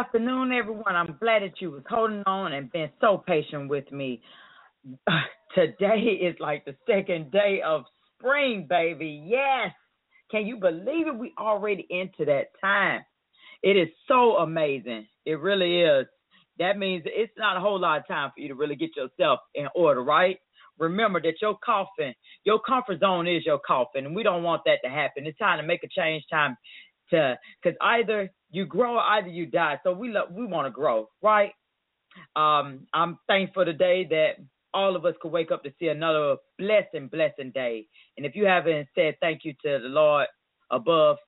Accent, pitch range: American, 155-215 Hz